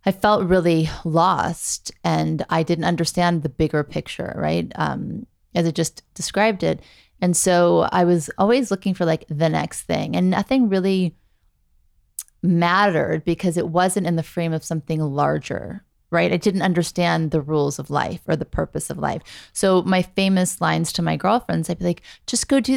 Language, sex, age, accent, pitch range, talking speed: English, female, 30-49, American, 165-200 Hz, 180 wpm